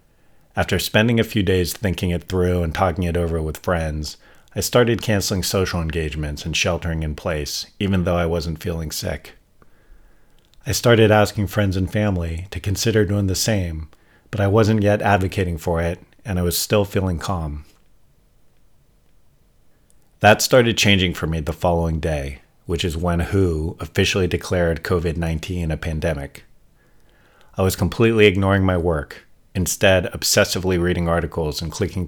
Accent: American